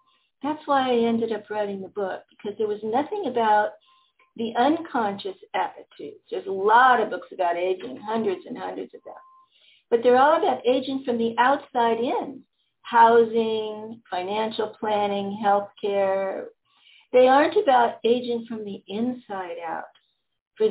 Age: 50-69